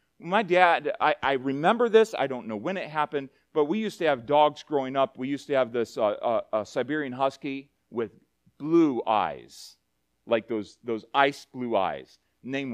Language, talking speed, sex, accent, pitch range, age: English, 190 wpm, male, American, 125-170 Hz, 40-59